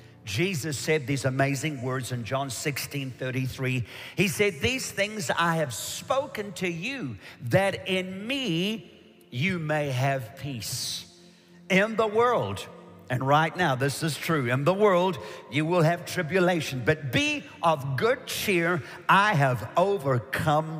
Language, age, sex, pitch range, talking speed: English, 50-69, male, 135-175 Hz, 140 wpm